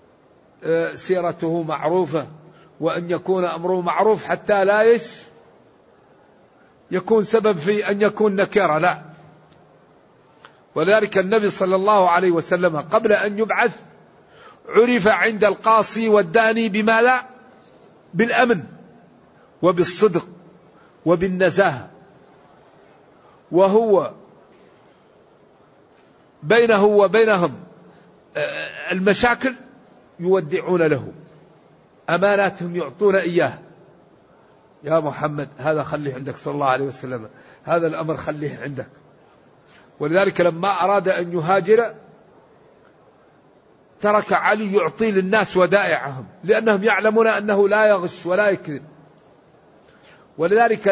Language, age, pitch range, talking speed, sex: Arabic, 50-69, 175-220 Hz, 85 wpm, male